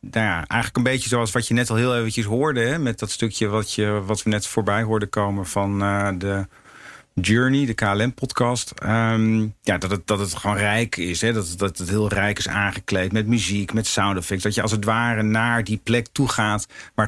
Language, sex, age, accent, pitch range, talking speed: English, male, 50-69, Dutch, 100-125 Hz, 230 wpm